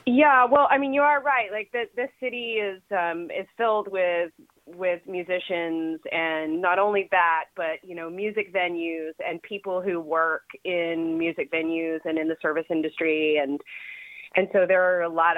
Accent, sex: American, female